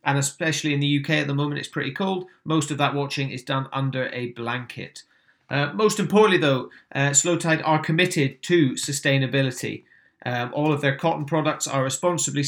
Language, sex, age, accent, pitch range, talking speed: English, male, 30-49, British, 135-160 Hz, 190 wpm